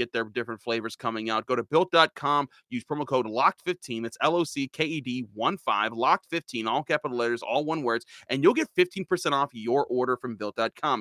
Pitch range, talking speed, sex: 125-170 Hz, 205 wpm, male